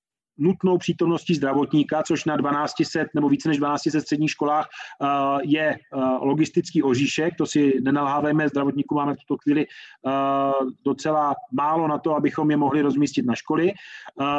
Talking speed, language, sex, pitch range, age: 140 wpm, Czech, male, 150-180 Hz, 30-49